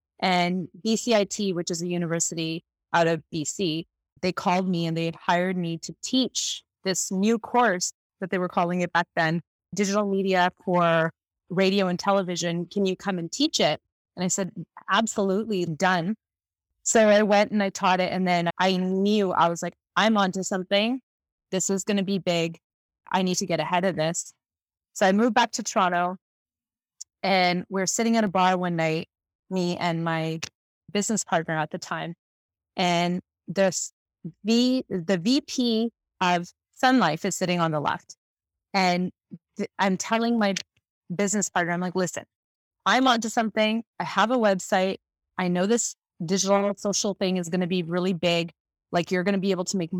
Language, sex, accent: English, female, American